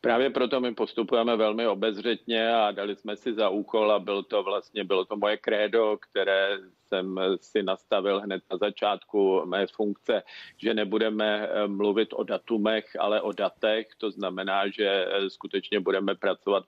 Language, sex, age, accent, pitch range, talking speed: Czech, male, 50-69, native, 100-110 Hz, 150 wpm